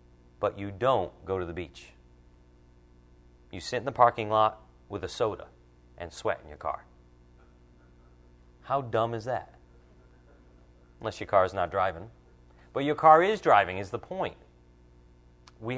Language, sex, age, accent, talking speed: English, male, 40-59, American, 150 wpm